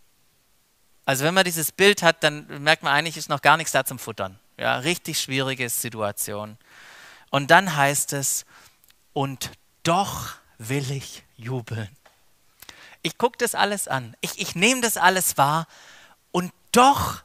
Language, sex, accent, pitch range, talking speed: German, male, German, 130-195 Hz, 150 wpm